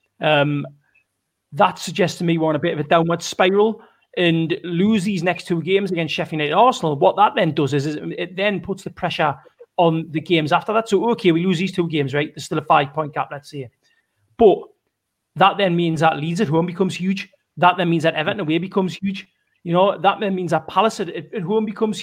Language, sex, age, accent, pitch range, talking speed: English, male, 30-49, British, 160-195 Hz, 230 wpm